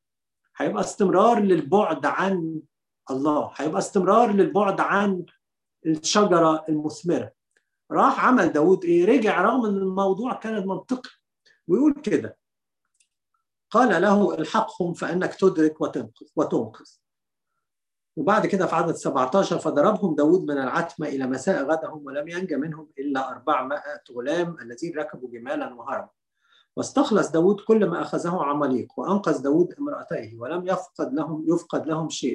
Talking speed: 120 wpm